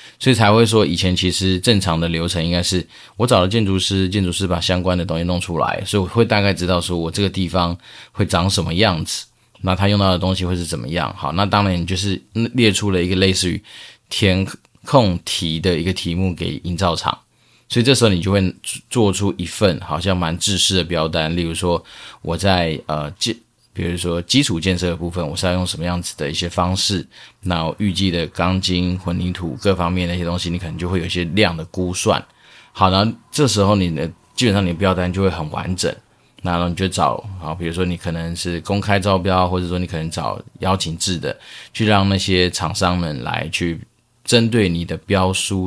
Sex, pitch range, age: male, 85-100 Hz, 20-39